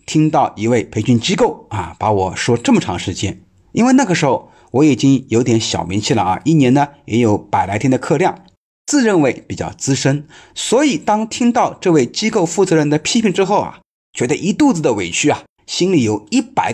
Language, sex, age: Chinese, male, 30-49